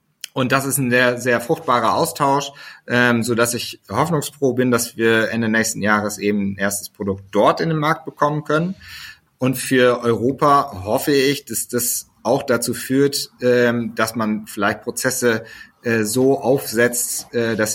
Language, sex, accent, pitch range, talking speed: German, male, German, 110-135 Hz, 165 wpm